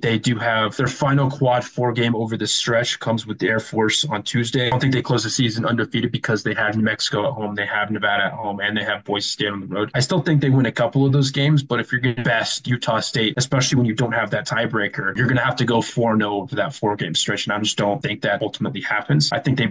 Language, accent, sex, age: English, American, male, 20-39